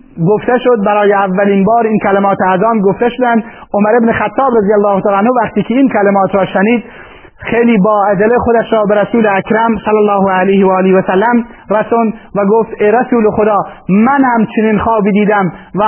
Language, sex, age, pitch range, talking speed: Persian, male, 30-49, 195-220 Hz, 180 wpm